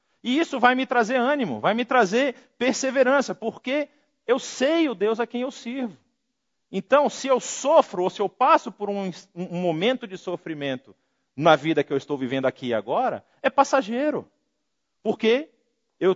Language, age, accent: Portuguese, 50-69, Brazilian